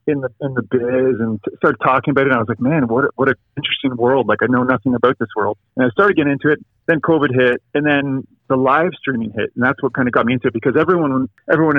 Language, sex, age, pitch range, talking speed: English, male, 40-59, 120-150 Hz, 275 wpm